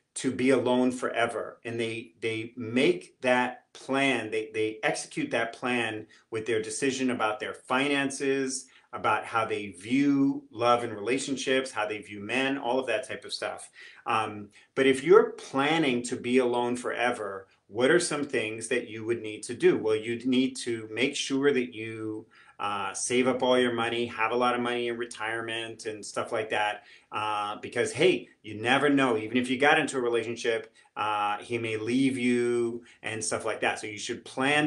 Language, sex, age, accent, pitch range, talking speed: English, male, 40-59, American, 110-130 Hz, 185 wpm